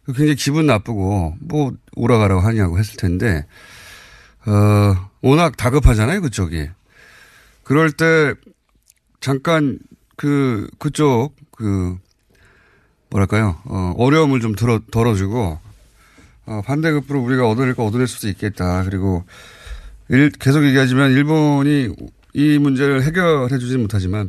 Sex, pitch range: male, 100-145 Hz